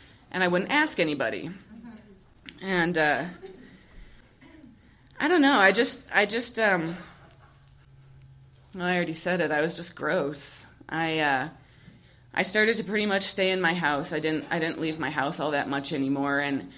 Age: 20-39